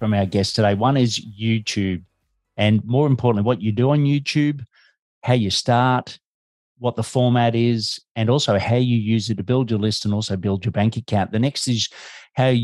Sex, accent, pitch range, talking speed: male, Australian, 105-125 Hz, 200 wpm